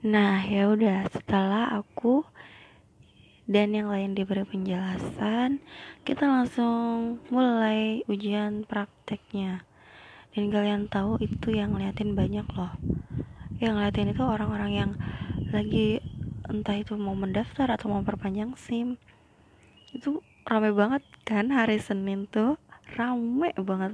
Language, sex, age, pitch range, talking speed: Indonesian, female, 20-39, 195-235 Hz, 115 wpm